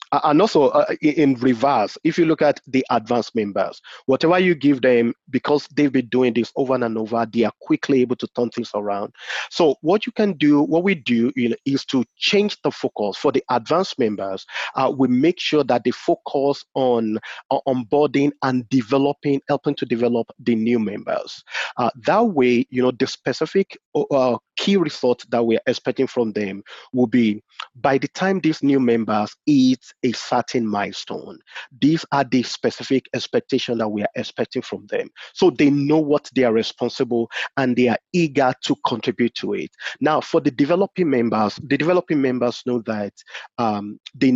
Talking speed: 185 wpm